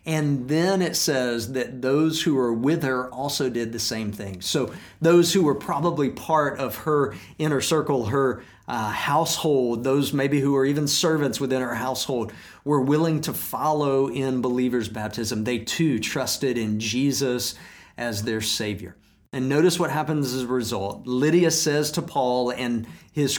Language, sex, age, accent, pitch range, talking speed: English, male, 50-69, American, 120-150 Hz, 165 wpm